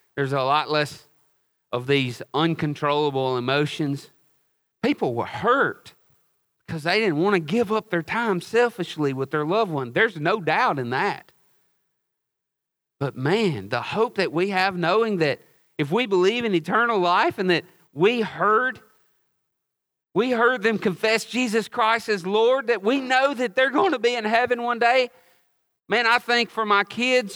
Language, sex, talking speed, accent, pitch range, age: English, male, 165 wpm, American, 135-205 Hz, 40-59